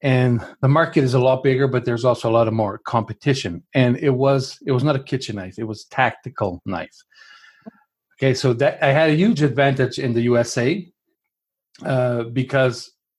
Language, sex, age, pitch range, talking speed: English, male, 40-59, 115-140 Hz, 190 wpm